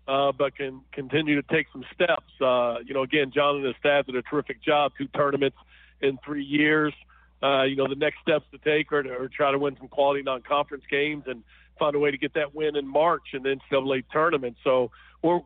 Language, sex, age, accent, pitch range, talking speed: English, male, 50-69, American, 135-150 Hz, 230 wpm